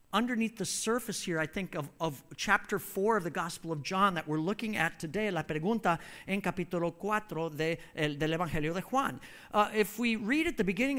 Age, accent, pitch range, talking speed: 50-69, American, 180-230 Hz, 190 wpm